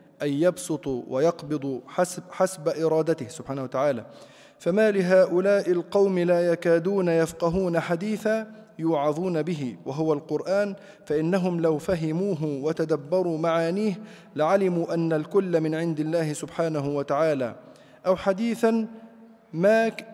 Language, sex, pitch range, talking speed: Arabic, male, 155-190 Hz, 100 wpm